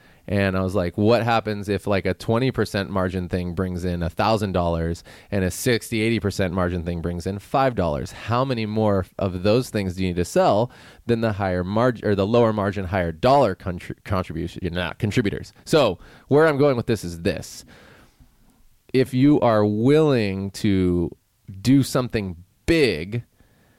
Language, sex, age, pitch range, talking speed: English, male, 20-39, 95-120 Hz, 160 wpm